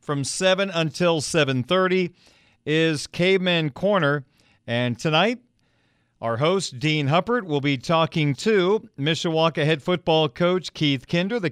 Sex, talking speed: male, 125 wpm